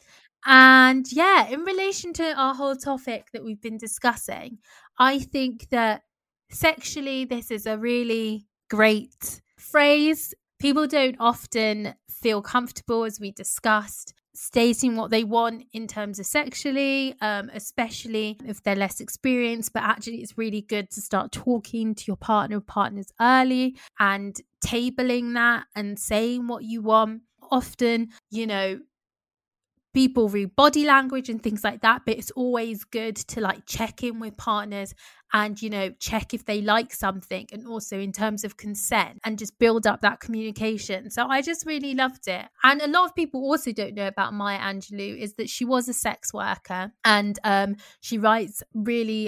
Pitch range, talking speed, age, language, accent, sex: 210-245 Hz, 165 wpm, 20-39, English, British, female